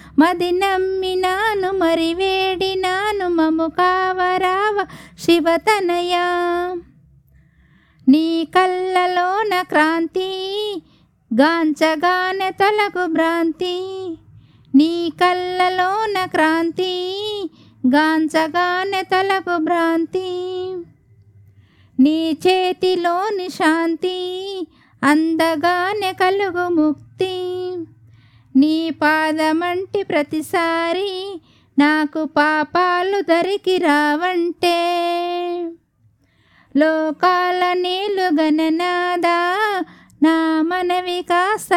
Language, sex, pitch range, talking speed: Telugu, female, 320-370 Hz, 50 wpm